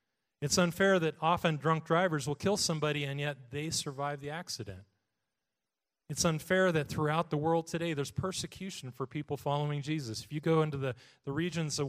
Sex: male